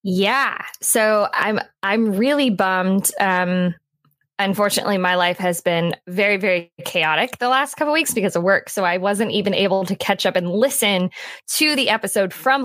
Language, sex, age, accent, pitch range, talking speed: English, female, 10-29, American, 185-225 Hz, 175 wpm